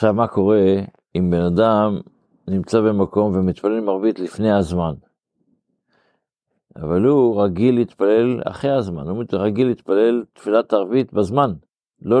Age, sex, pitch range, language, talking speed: 60-79, male, 90-115 Hz, Hebrew, 125 wpm